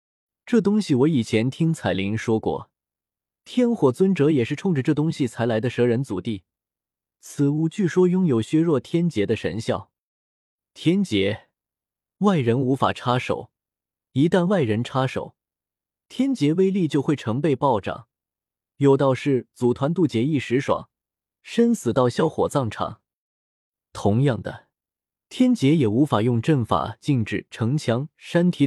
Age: 20-39